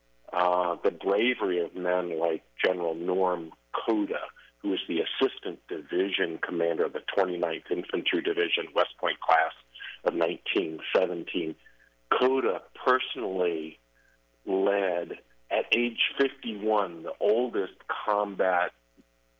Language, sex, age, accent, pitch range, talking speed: English, male, 50-69, American, 80-130 Hz, 105 wpm